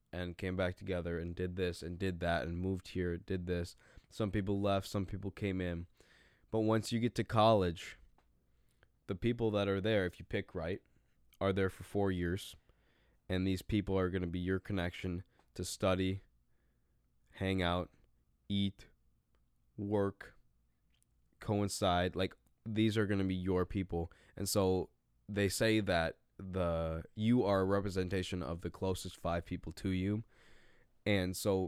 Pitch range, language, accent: 85-100 Hz, English, American